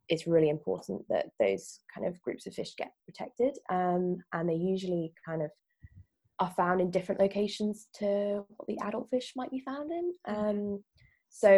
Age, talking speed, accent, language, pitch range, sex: 20-39, 175 wpm, British, English, 160-195 Hz, female